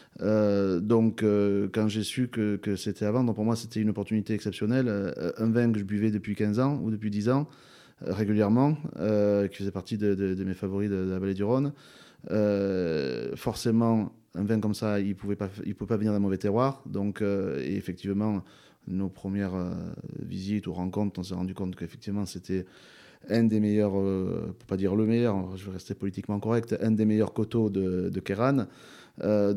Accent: French